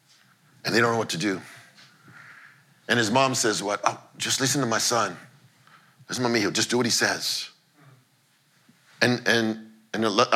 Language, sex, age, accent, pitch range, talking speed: English, male, 50-69, American, 120-185 Hz, 175 wpm